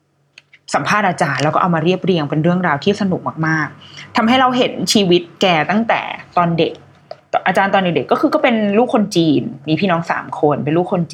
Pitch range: 155-215 Hz